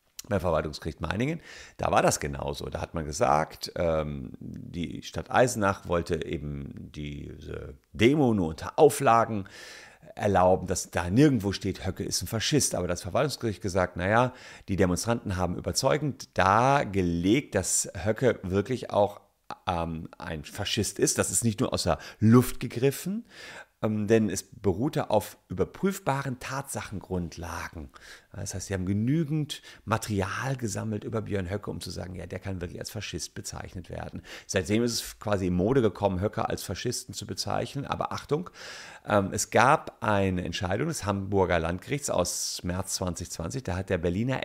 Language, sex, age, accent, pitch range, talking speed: German, male, 40-59, German, 90-115 Hz, 150 wpm